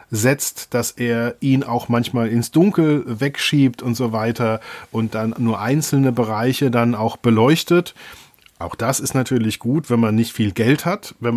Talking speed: 170 wpm